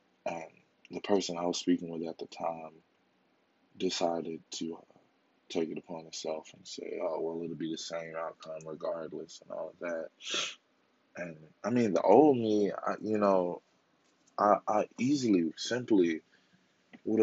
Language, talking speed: English, 160 wpm